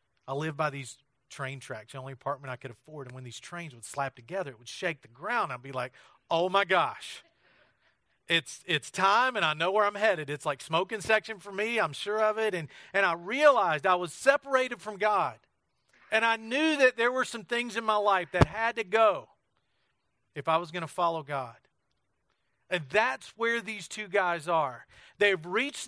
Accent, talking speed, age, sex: American, 205 wpm, 40-59, male